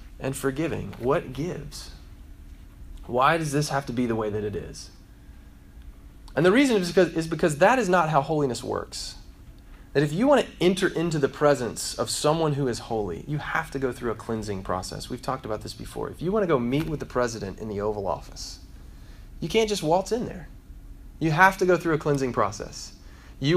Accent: American